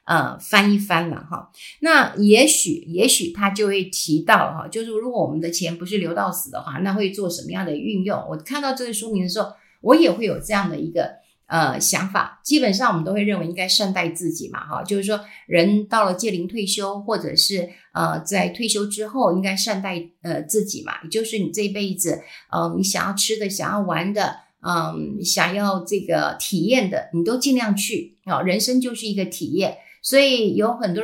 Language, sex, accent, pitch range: Chinese, female, native, 185-245 Hz